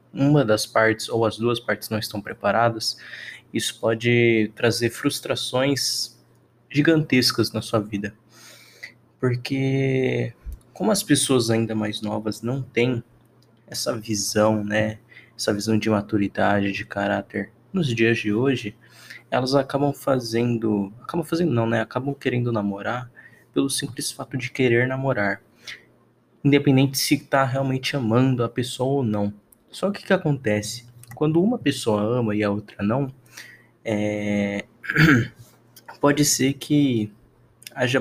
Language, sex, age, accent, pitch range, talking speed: Portuguese, male, 20-39, Brazilian, 110-135 Hz, 130 wpm